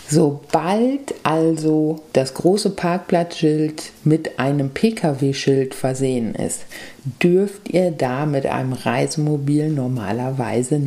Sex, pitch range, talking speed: female, 135-165 Hz, 95 wpm